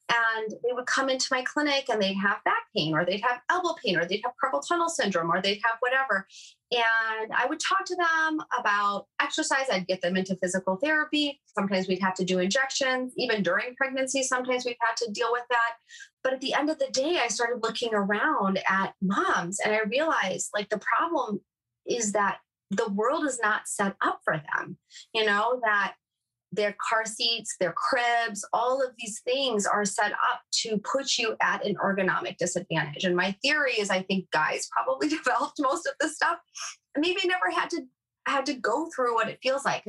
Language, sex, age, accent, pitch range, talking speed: English, female, 30-49, American, 190-265 Hz, 200 wpm